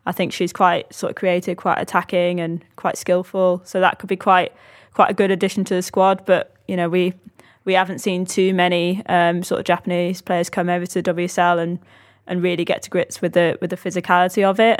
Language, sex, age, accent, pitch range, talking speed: English, female, 20-39, British, 170-185 Hz, 225 wpm